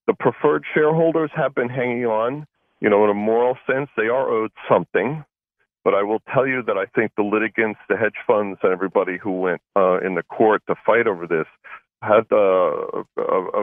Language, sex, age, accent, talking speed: English, male, 50-69, American, 205 wpm